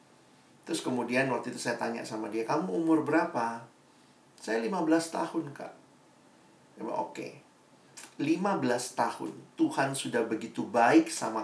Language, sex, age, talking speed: Indonesian, male, 40-59, 125 wpm